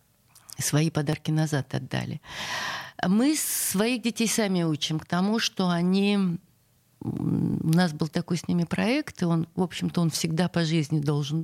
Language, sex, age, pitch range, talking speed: Russian, female, 50-69, 160-200 Hz, 150 wpm